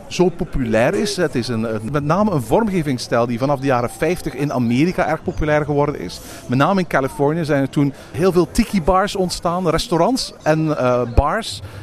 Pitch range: 135-180 Hz